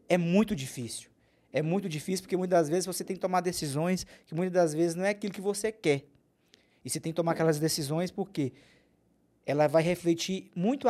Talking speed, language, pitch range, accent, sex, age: 205 wpm, Portuguese, 140-190 Hz, Brazilian, male, 20-39